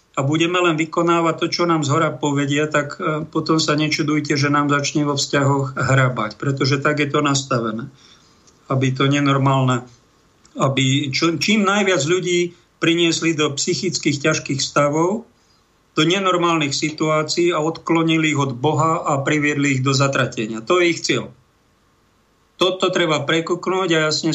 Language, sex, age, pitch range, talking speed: Slovak, male, 50-69, 140-160 Hz, 150 wpm